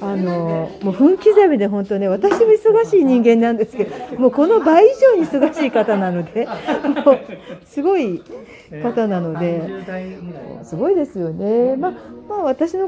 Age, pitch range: 40-59, 210-340 Hz